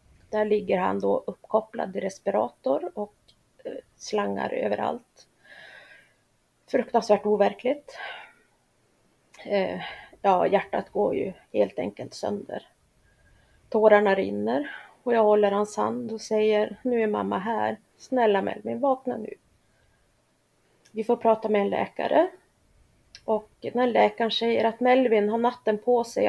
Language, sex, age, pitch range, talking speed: Swedish, female, 30-49, 205-240 Hz, 115 wpm